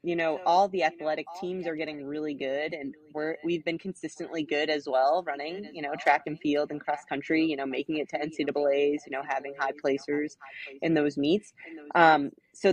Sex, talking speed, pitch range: female, 205 wpm, 145-170 Hz